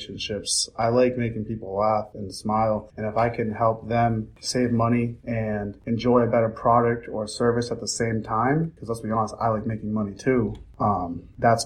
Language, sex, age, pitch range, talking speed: English, male, 20-39, 105-120 Hz, 195 wpm